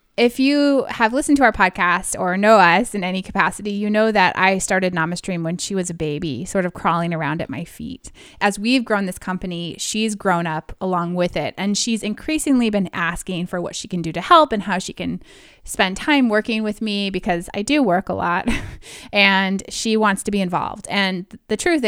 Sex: female